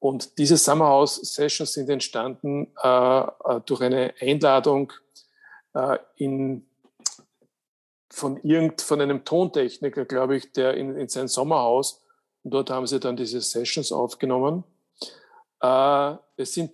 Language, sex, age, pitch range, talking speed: German, male, 50-69, 130-160 Hz, 115 wpm